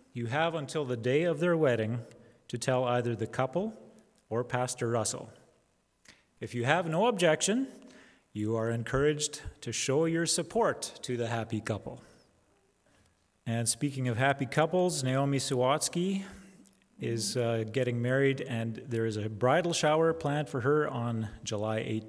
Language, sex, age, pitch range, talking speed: English, male, 30-49, 110-150 Hz, 145 wpm